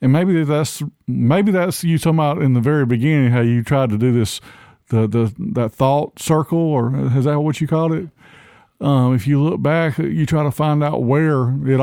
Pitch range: 115-145 Hz